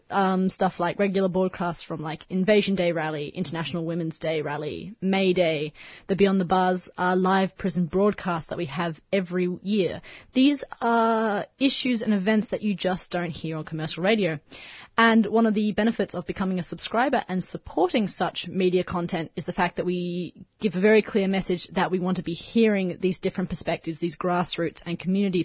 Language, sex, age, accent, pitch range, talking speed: English, female, 20-39, Australian, 175-210 Hz, 185 wpm